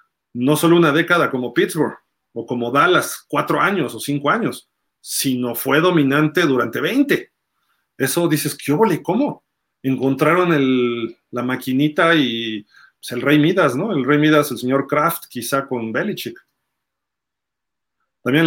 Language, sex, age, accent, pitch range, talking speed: Spanish, male, 40-59, Mexican, 125-150 Hz, 145 wpm